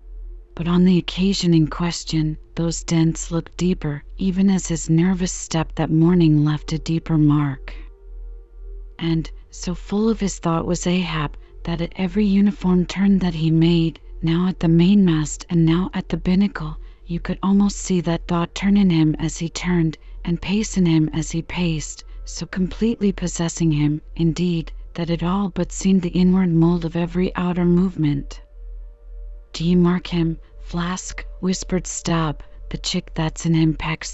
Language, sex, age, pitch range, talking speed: English, female, 40-59, 160-185 Hz, 165 wpm